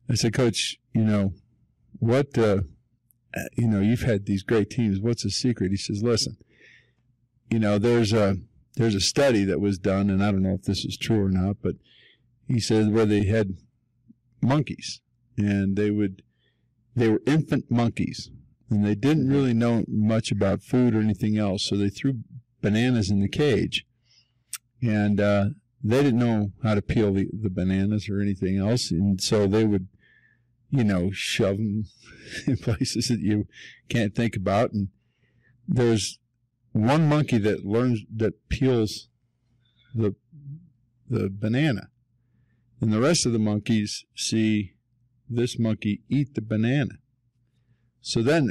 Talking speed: 155 wpm